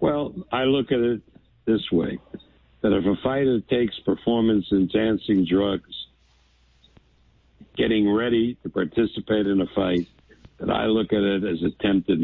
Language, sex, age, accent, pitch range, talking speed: English, male, 60-79, American, 85-115 Hz, 135 wpm